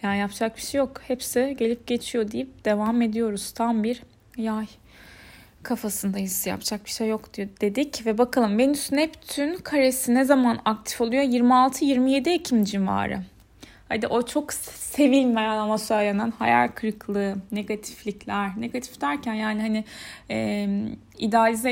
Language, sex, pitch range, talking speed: Turkish, female, 210-260 Hz, 125 wpm